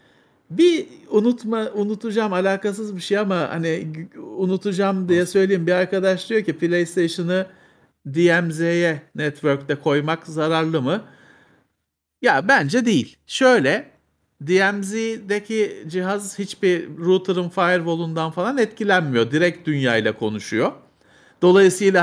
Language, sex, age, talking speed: Turkish, male, 50-69, 100 wpm